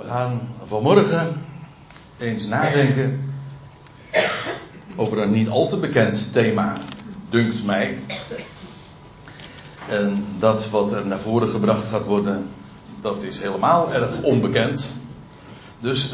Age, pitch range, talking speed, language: 60-79, 110-140 Hz, 110 wpm, Dutch